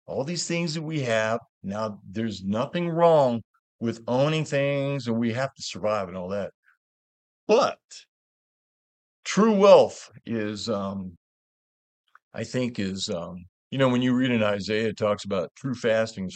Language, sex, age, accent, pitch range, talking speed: English, male, 50-69, American, 100-140 Hz, 160 wpm